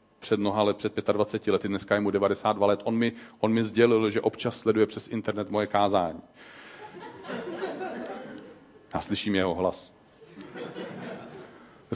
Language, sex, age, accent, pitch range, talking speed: Czech, male, 40-59, native, 110-150 Hz, 135 wpm